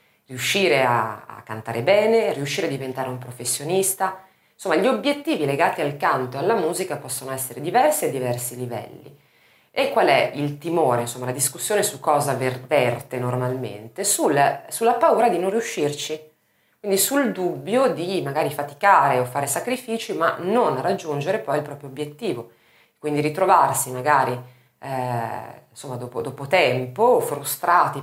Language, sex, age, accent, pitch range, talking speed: Italian, female, 30-49, native, 125-160 Hz, 145 wpm